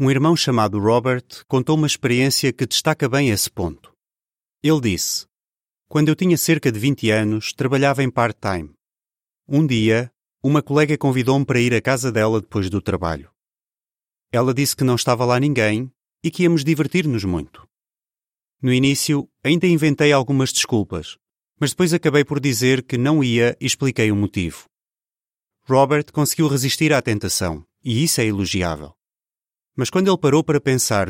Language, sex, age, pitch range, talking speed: Portuguese, male, 30-49, 110-145 Hz, 160 wpm